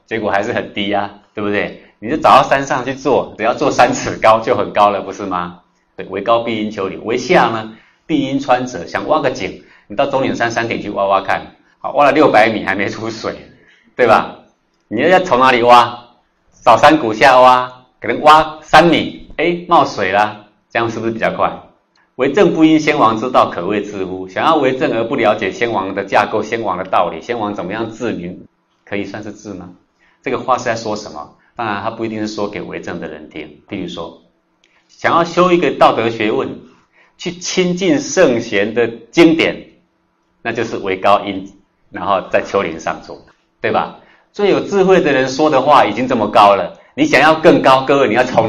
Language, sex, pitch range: Chinese, male, 100-135 Hz